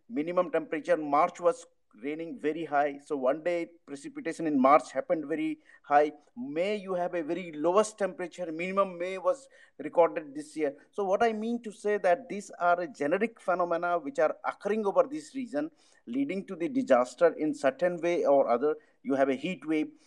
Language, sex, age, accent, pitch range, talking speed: English, male, 50-69, Indian, 155-230 Hz, 180 wpm